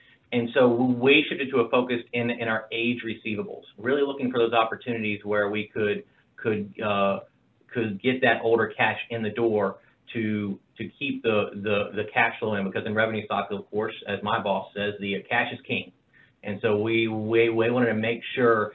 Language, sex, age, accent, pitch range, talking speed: English, male, 40-59, American, 105-125 Hz, 200 wpm